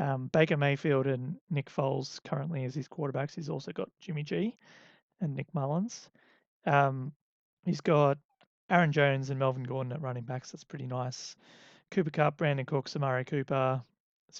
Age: 30-49